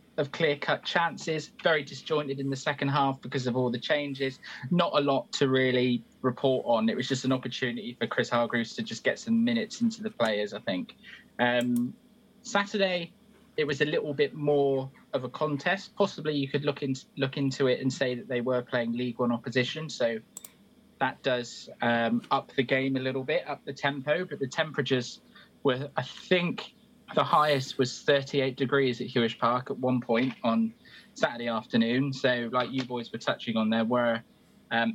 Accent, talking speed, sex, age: British, 185 wpm, male, 20-39